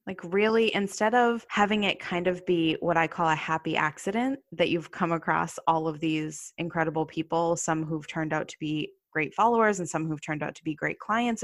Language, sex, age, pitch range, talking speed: English, female, 20-39, 155-175 Hz, 215 wpm